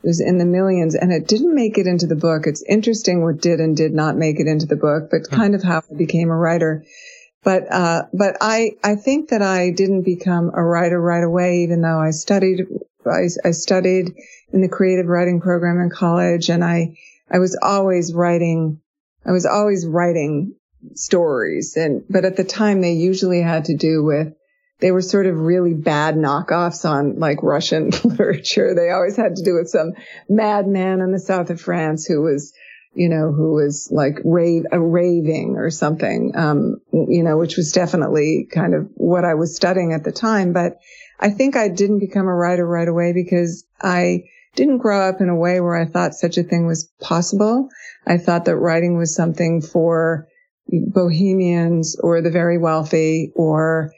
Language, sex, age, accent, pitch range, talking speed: English, female, 50-69, American, 165-190 Hz, 190 wpm